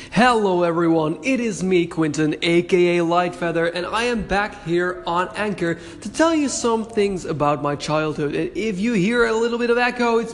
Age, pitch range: 20-39, 155-225 Hz